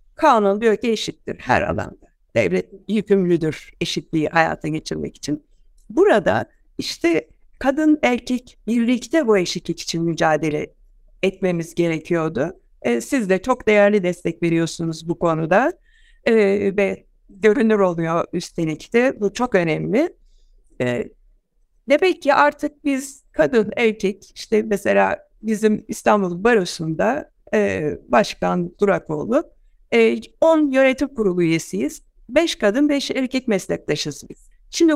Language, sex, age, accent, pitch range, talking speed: Turkish, female, 60-79, native, 180-260 Hz, 115 wpm